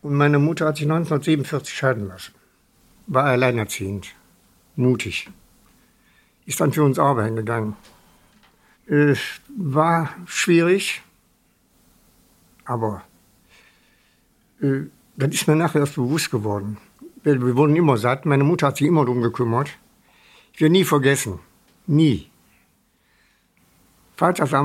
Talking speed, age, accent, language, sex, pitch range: 115 wpm, 60-79, German, English, male, 120-155 Hz